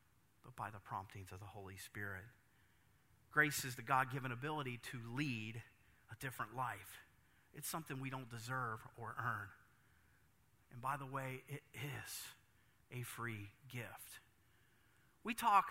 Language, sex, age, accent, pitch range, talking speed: English, male, 30-49, American, 120-200 Hz, 140 wpm